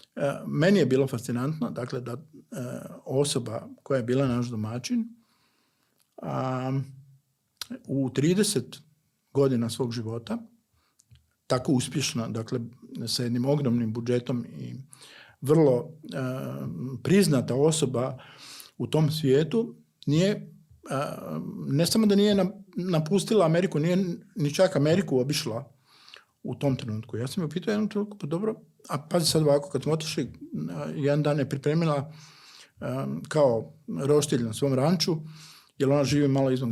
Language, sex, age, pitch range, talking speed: Croatian, male, 50-69, 130-170 Hz, 130 wpm